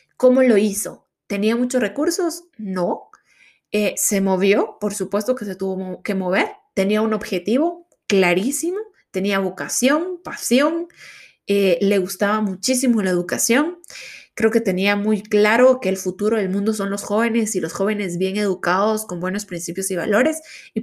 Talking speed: 155 wpm